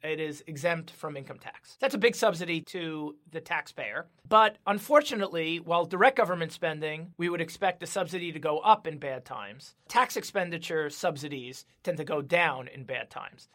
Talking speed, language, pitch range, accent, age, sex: 175 wpm, English, 155-195 Hz, American, 30-49, male